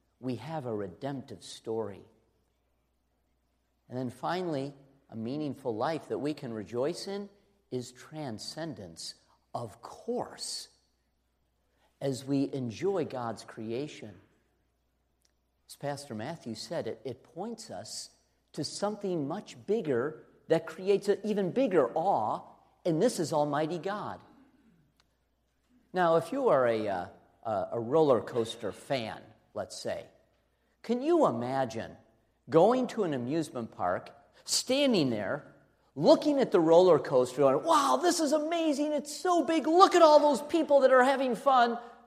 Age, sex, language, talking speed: 50-69, male, English, 130 wpm